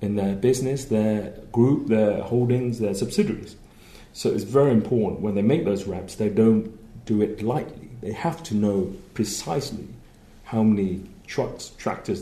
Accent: British